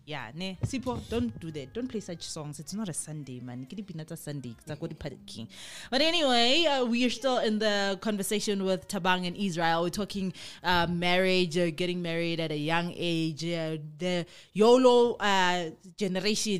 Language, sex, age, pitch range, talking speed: English, female, 20-39, 165-205 Hz, 165 wpm